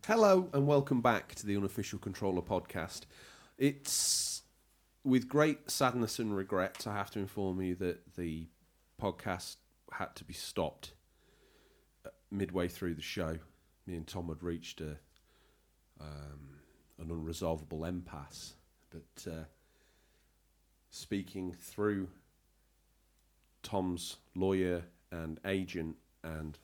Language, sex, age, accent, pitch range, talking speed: English, male, 40-59, British, 80-100 Hz, 115 wpm